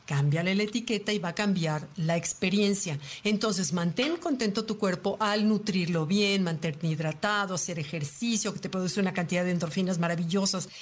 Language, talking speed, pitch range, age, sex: Spanish, 160 wpm, 170-215 Hz, 50-69, female